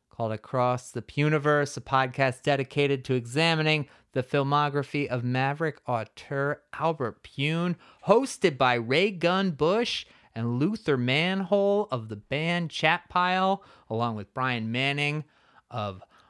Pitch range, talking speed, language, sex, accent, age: 125-165 Hz, 120 wpm, English, male, American, 30-49